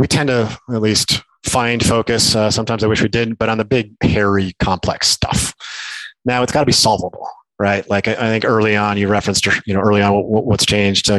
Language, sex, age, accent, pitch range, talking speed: English, male, 30-49, American, 100-120 Hz, 230 wpm